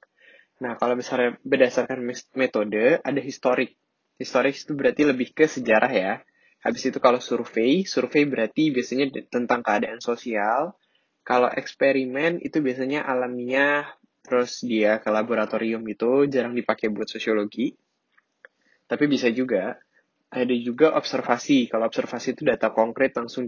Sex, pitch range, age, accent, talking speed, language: male, 115-135 Hz, 10-29, Indonesian, 130 wpm, English